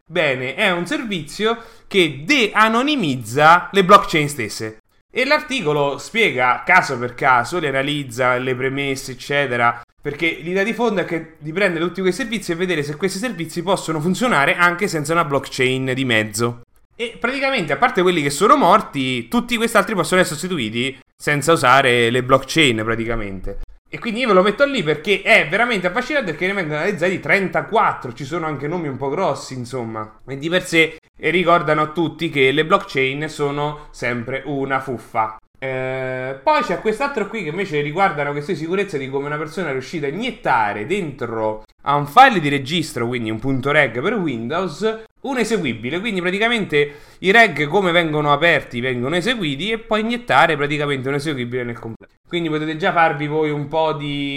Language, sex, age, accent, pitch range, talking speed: Italian, male, 30-49, native, 135-190 Hz, 175 wpm